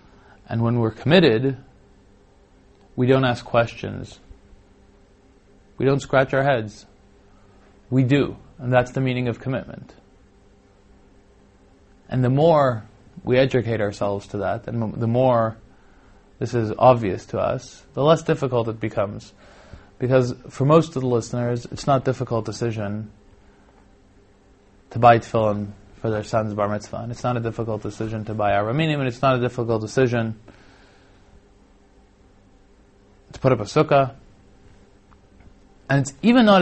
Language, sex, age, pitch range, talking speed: English, male, 20-39, 100-125 Hz, 140 wpm